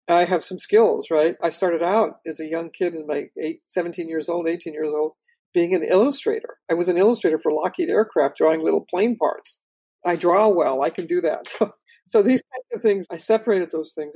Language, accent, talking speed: English, American, 220 wpm